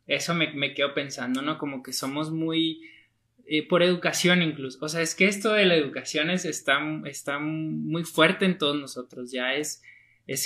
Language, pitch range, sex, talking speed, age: Spanish, 135-165 Hz, male, 190 wpm, 20-39